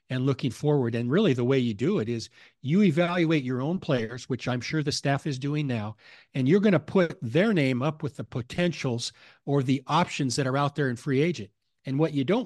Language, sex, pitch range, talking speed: English, male, 125-160 Hz, 235 wpm